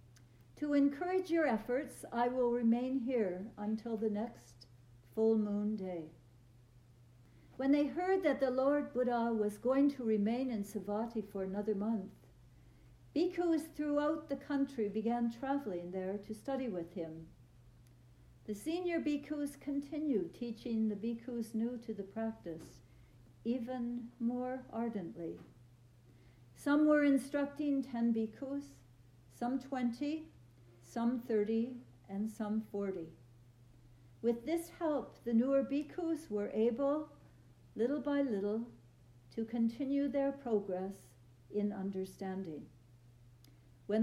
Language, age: English, 60-79